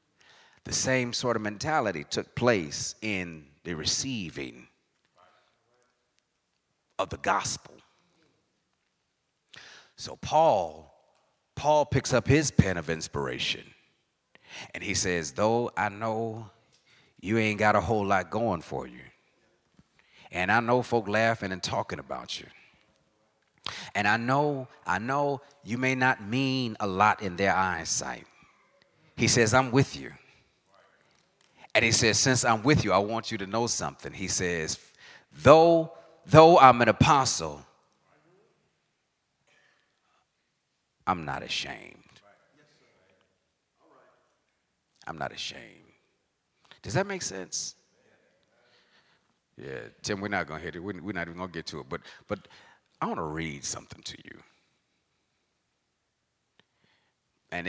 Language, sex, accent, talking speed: English, male, American, 125 wpm